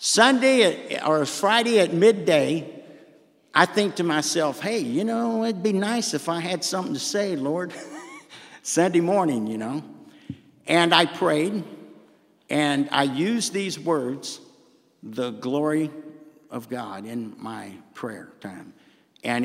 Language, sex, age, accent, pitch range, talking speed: English, male, 50-69, American, 145-210 Hz, 135 wpm